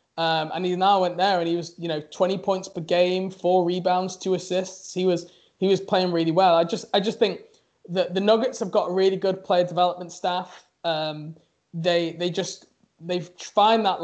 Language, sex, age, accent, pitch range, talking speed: English, male, 20-39, British, 170-190 Hz, 210 wpm